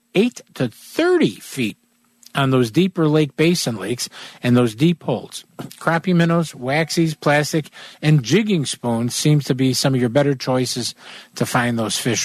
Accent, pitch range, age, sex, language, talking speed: American, 135-200 Hz, 50-69, male, English, 160 wpm